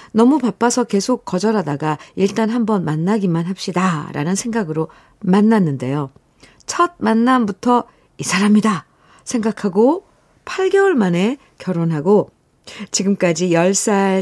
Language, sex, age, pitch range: Korean, female, 50-69, 155-210 Hz